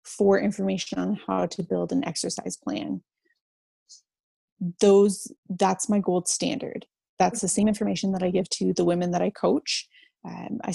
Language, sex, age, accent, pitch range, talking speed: English, female, 20-39, American, 180-215 Hz, 160 wpm